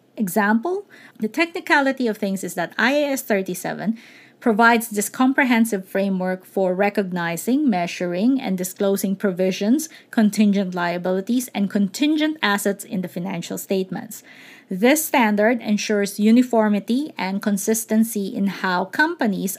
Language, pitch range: English, 200-255 Hz